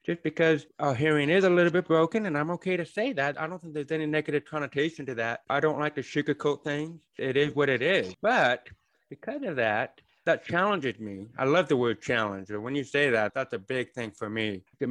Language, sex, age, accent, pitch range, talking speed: English, male, 30-49, American, 115-145 Hz, 235 wpm